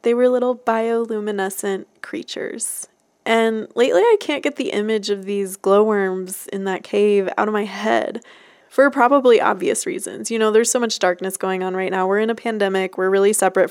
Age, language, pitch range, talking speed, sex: 20-39, English, 190-245 Hz, 190 wpm, female